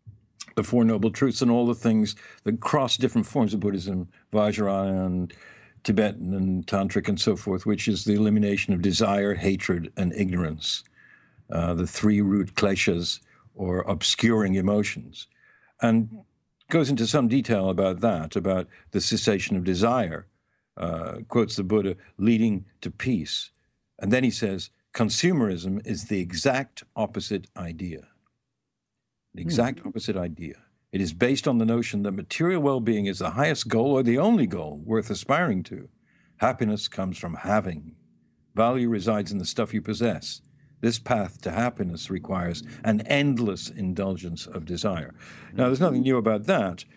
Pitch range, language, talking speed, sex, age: 95-115 Hz, English, 150 wpm, male, 60-79